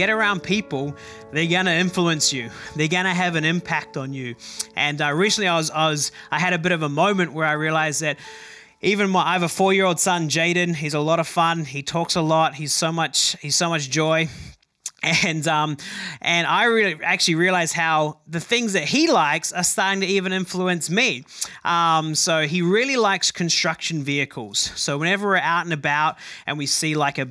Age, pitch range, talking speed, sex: 20-39, 155-195 Hz, 200 wpm, male